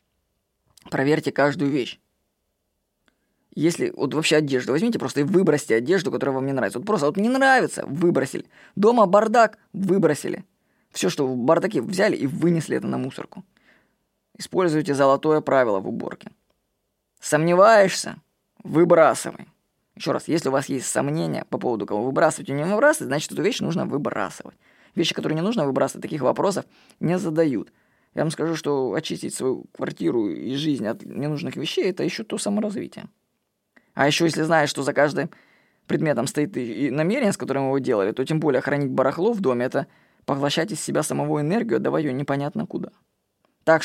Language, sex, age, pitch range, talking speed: Russian, female, 20-39, 140-200 Hz, 165 wpm